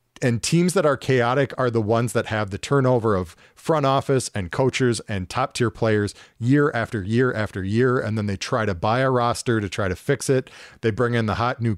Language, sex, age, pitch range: English, male, 40-59, 105-125 Hz